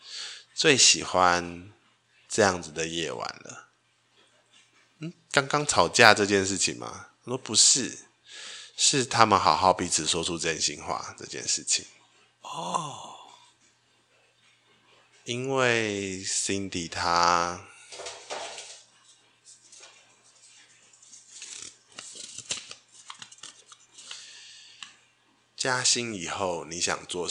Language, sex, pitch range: Chinese, male, 85-110 Hz